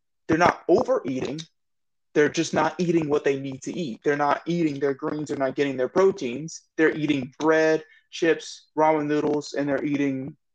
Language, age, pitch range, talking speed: English, 30-49, 135-165 Hz, 175 wpm